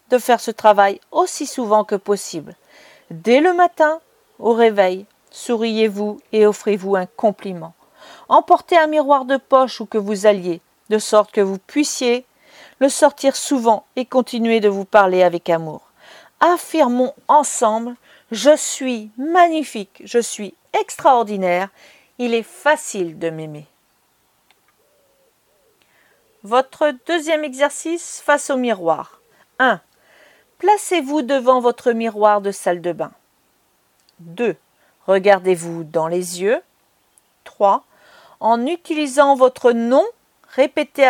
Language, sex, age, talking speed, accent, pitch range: French, female, 40-59, 120 wpm, French, 205-280 Hz